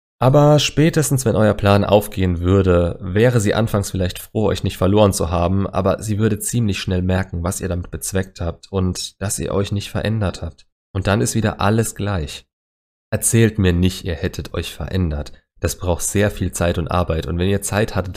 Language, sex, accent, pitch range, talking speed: German, male, German, 85-105 Hz, 200 wpm